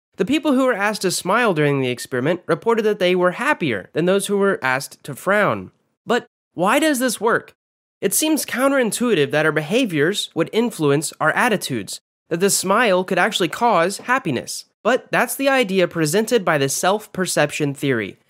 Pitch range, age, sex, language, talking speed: 150-230 Hz, 10-29, male, English, 175 wpm